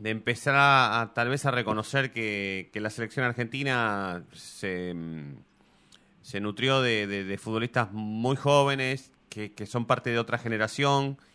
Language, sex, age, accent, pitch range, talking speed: Spanish, male, 30-49, Argentinian, 115-140 Hz, 150 wpm